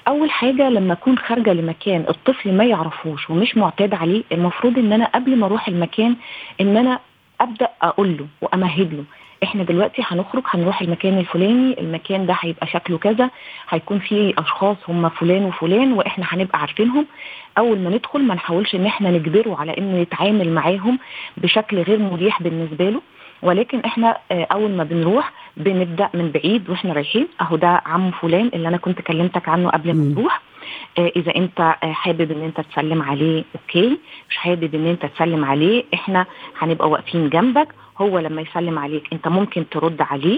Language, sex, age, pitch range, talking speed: Arabic, female, 30-49, 165-215 Hz, 170 wpm